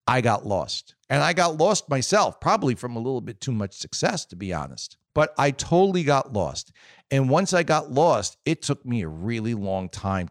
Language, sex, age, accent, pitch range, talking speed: English, male, 40-59, American, 110-165 Hz, 210 wpm